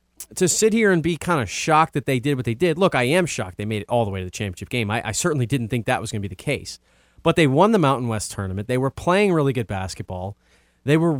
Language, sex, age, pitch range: English, male, 30-49, 110-165 Hz